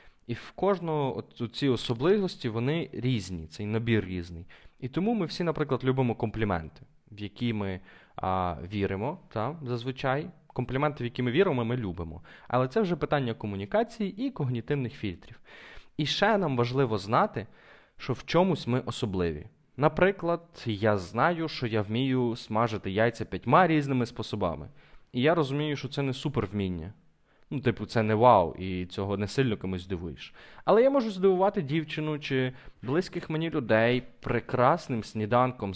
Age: 20-39